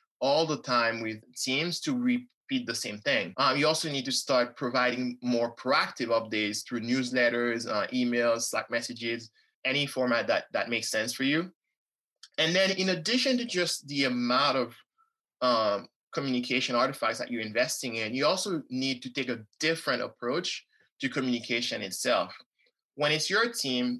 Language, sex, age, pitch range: English, male, 20-39, 120-155 Hz